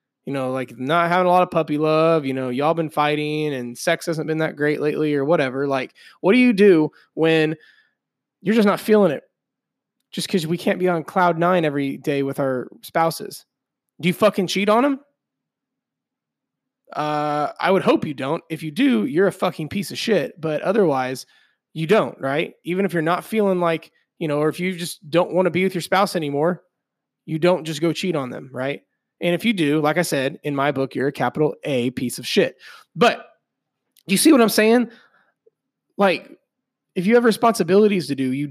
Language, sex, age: English, male, 20-39